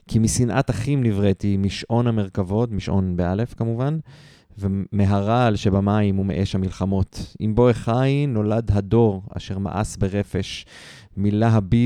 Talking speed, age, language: 110 wpm, 20-39, Hebrew